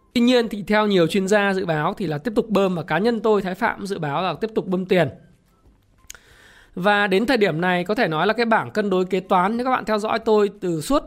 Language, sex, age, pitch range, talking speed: Vietnamese, male, 20-39, 160-210 Hz, 270 wpm